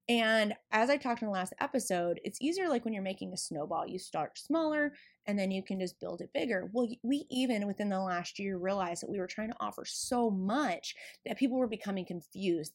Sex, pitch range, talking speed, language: female, 190-255 Hz, 225 wpm, English